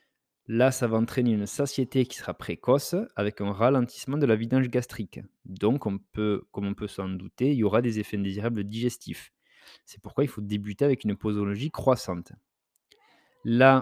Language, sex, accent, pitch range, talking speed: French, male, French, 105-130 Hz, 180 wpm